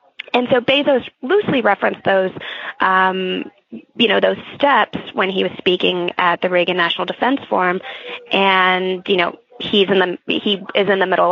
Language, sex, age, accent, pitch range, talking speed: English, female, 20-39, American, 180-210 Hz, 170 wpm